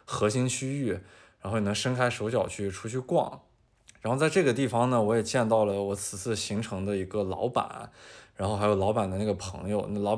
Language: Chinese